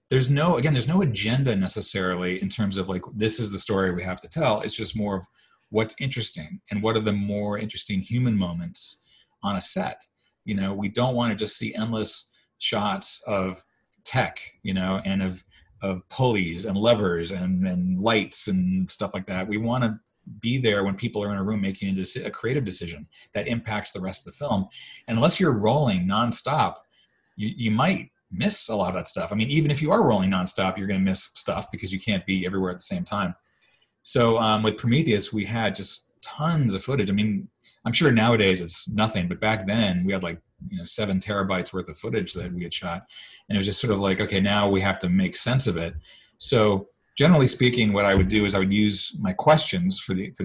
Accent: American